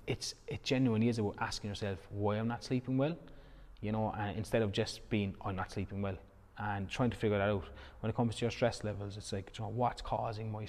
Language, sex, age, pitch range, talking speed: English, male, 20-39, 100-115 Hz, 240 wpm